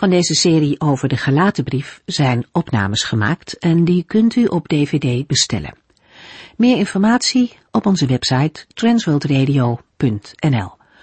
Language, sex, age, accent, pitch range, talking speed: Dutch, female, 50-69, Dutch, 135-190 Hz, 120 wpm